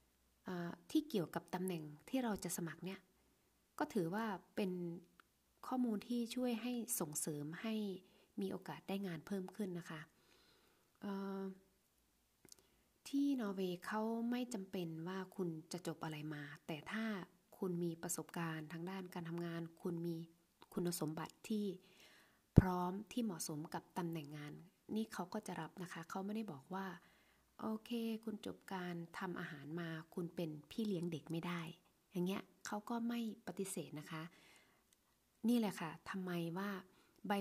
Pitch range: 165-205 Hz